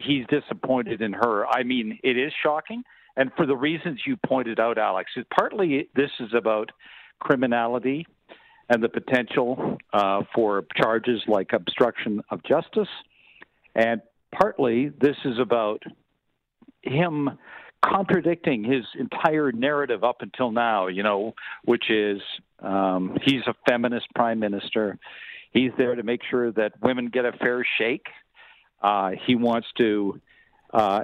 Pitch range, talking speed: 110-140 Hz, 140 wpm